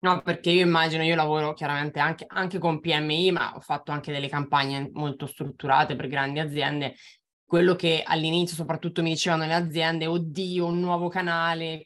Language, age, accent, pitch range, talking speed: Italian, 20-39, native, 145-170 Hz, 170 wpm